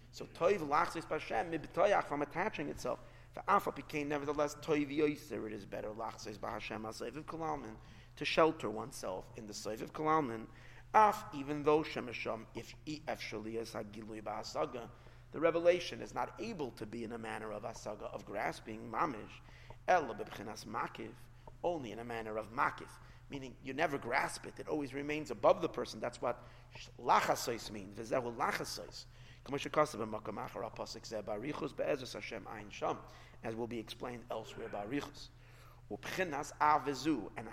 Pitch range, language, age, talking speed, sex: 115-150 Hz, English, 30-49, 140 wpm, male